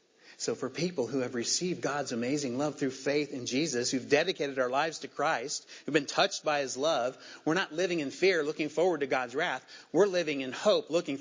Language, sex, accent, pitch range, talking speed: English, male, American, 120-155 Hz, 215 wpm